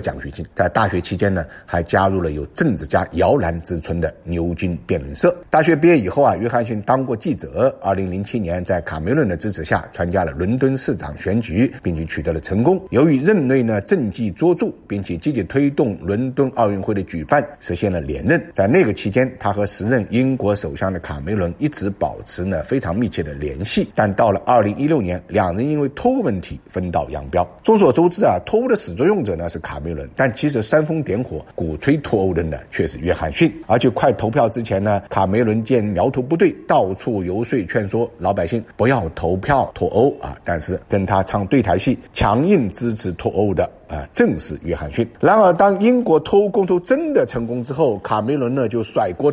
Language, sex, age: Chinese, male, 50-69